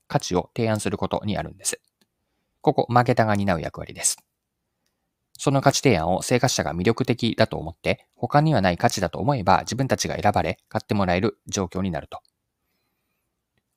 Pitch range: 95-135 Hz